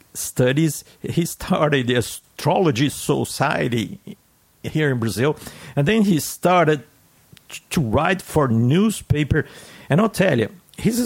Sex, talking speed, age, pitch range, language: male, 125 wpm, 50-69, 110-150 Hz, English